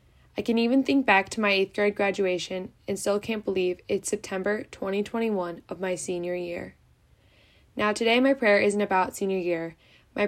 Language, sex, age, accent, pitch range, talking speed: English, female, 10-29, American, 180-210 Hz, 175 wpm